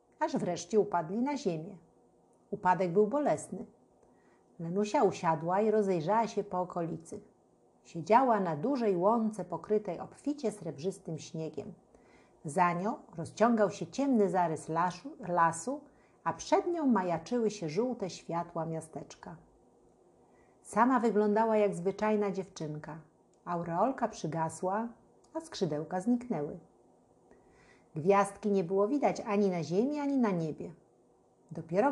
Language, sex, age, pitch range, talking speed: Polish, female, 50-69, 170-225 Hz, 110 wpm